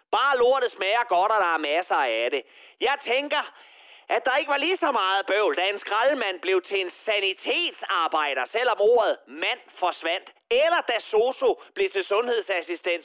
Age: 30-49